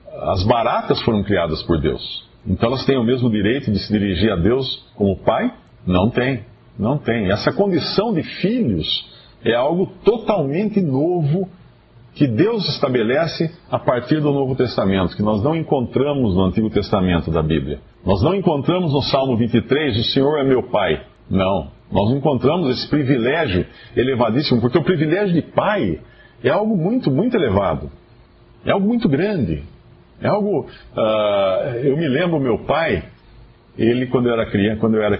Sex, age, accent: male, 50-69, Brazilian